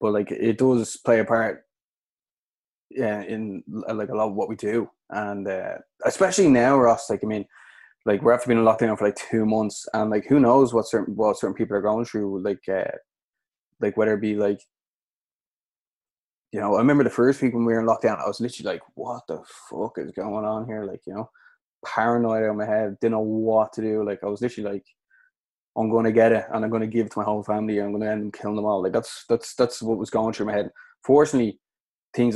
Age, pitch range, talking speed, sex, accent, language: 20-39, 105-115 Hz, 240 wpm, male, Irish, English